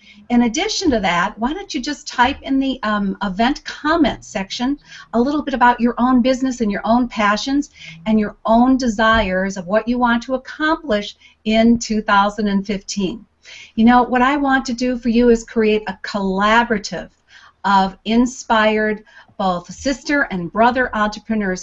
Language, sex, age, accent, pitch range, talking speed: English, female, 50-69, American, 205-255 Hz, 160 wpm